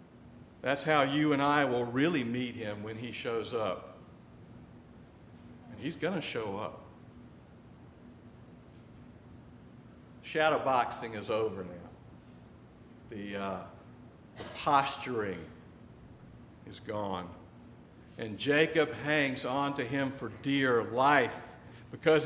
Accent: American